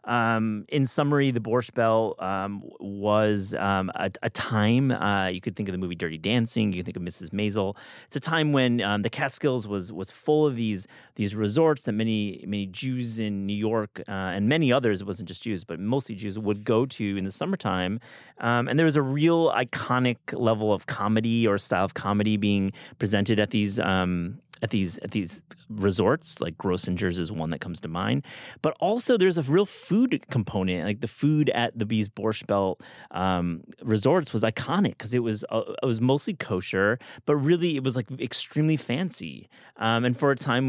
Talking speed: 200 wpm